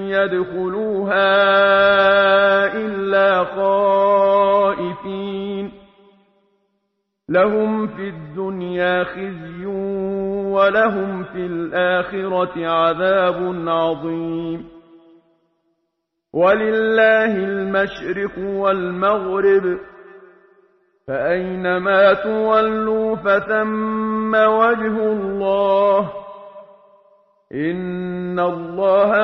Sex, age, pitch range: male, 50-69, 180-215 Hz